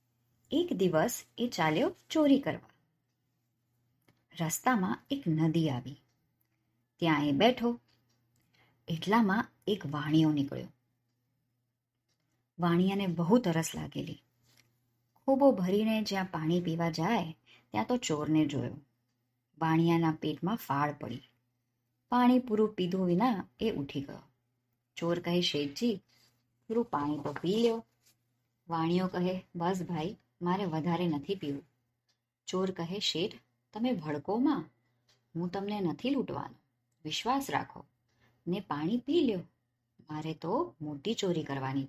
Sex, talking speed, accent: male, 95 wpm, native